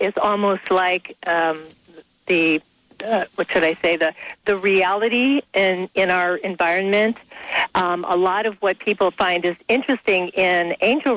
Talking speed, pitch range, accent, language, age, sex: 150 wpm, 175-210 Hz, American, English, 50-69, female